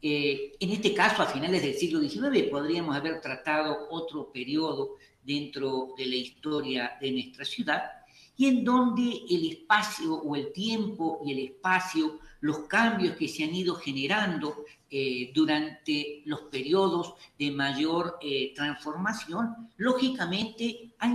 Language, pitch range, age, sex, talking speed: Spanish, 145-210 Hz, 50-69, female, 140 wpm